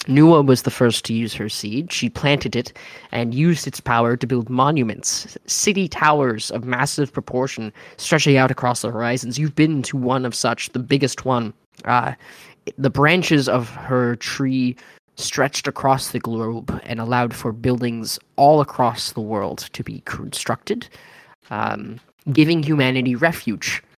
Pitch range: 115-140 Hz